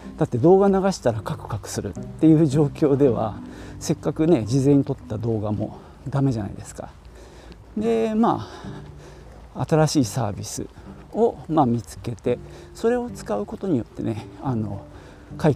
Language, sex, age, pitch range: Japanese, male, 40-59, 110-160 Hz